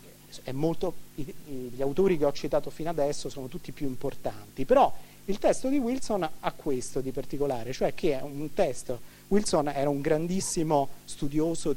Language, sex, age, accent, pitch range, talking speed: Italian, male, 40-59, native, 130-170 Hz, 160 wpm